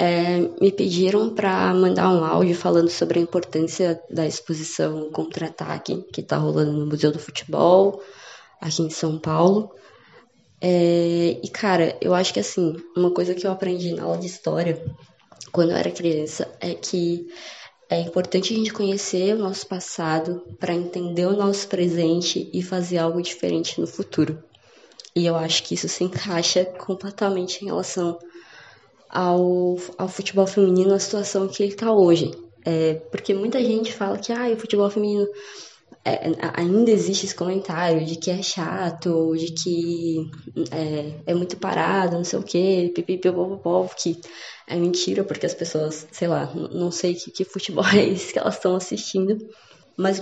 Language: Portuguese